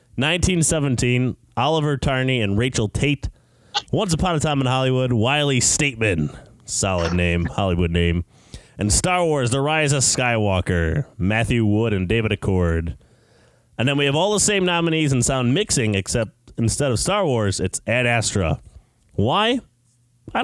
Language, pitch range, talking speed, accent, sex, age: English, 100-140 Hz, 150 wpm, American, male, 20-39